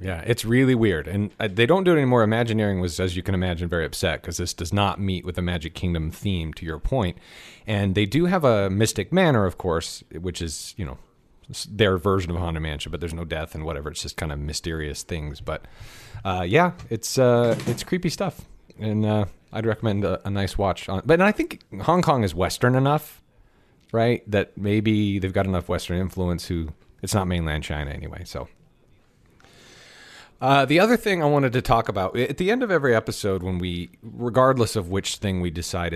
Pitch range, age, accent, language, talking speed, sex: 90-120 Hz, 30-49, American, English, 210 wpm, male